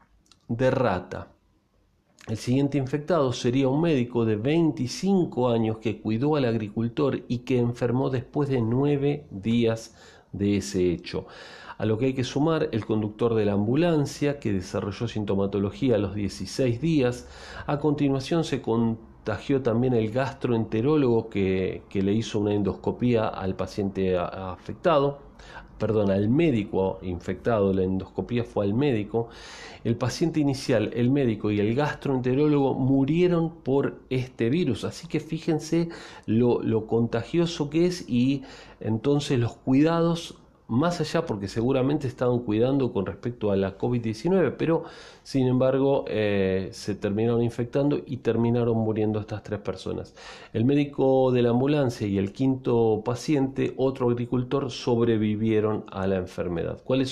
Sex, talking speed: male, 140 wpm